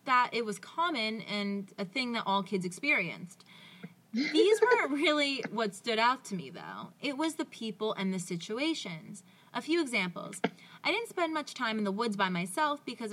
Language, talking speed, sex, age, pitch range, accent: English, 185 wpm, female, 20-39, 195-275 Hz, American